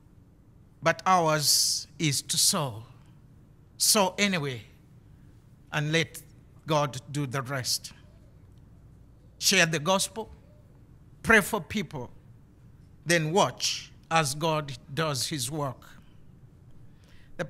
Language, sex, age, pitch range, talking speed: English, male, 50-69, 130-165 Hz, 95 wpm